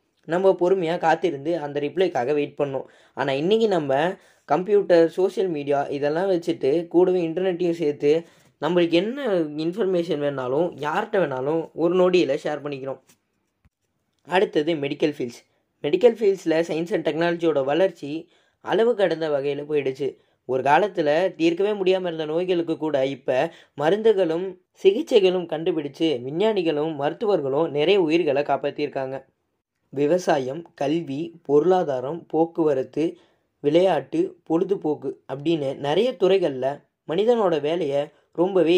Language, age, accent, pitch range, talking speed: Tamil, 20-39, native, 145-185 Hz, 105 wpm